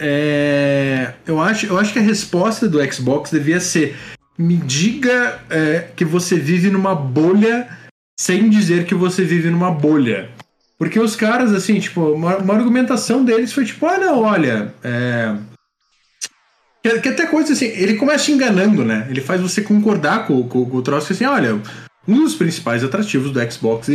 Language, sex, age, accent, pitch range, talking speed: Portuguese, male, 20-39, Brazilian, 145-225 Hz, 180 wpm